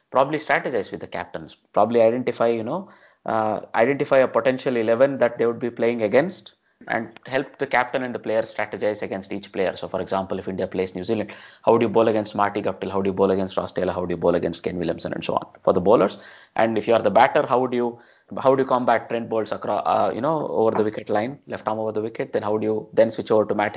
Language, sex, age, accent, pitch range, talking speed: English, male, 20-39, Indian, 110-140 Hz, 260 wpm